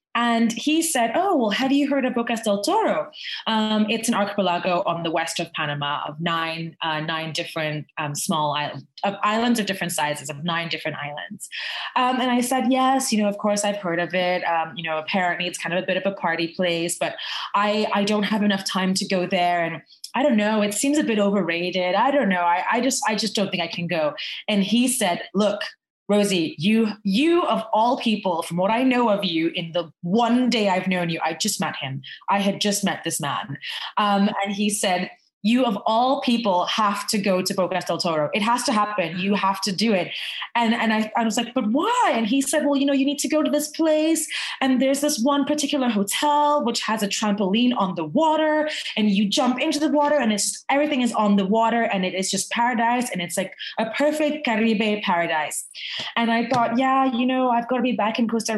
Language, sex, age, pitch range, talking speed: English, female, 20-39, 180-240 Hz, 230 wpm